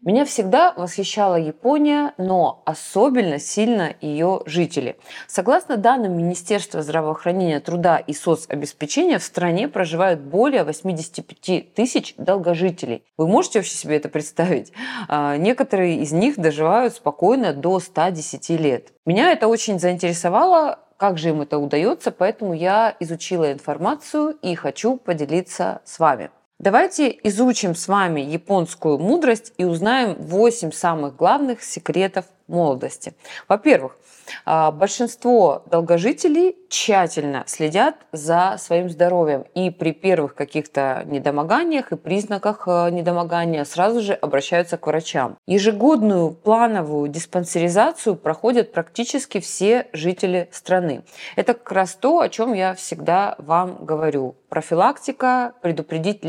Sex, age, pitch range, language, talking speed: female, 20-39, 160-225 Hz, Russian, 115 wpm